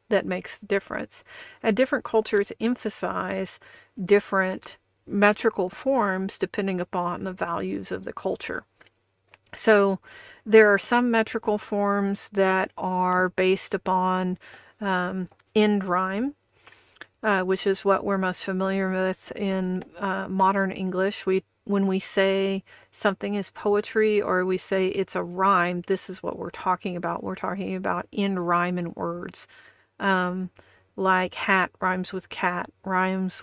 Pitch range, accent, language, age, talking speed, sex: 185-200 Hz, American, English, 40-59, 135 wpm, female